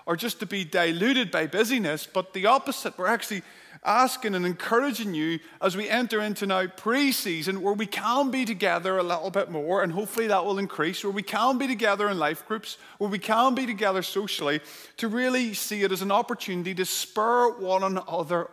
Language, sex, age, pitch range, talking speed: English, male, 30-49, 190-235 Hz, 200 wpm